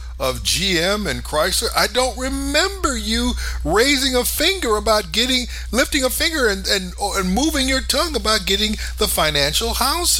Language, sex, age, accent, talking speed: English, male, 50-69, American, 160 wpm